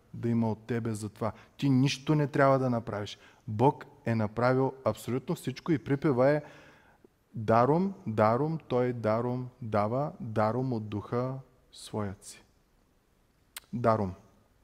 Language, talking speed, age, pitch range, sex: Bulgarian, 125 wpm, 20-39, 120-145 Hz, male